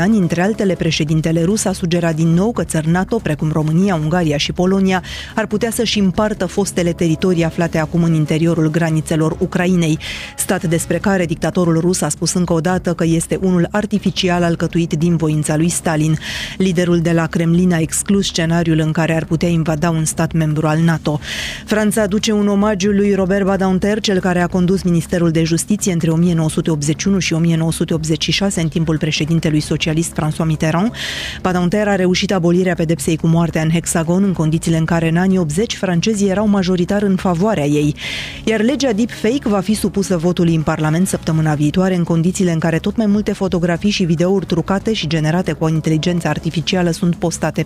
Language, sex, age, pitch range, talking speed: Romanian, female, 30-49, 165-195 Hz, 180 wpm